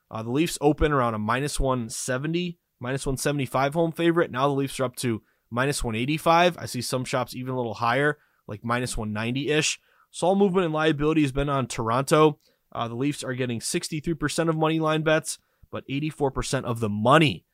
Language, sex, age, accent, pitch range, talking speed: English, male, 20-39, American, 120-155 Hz, 190 wpm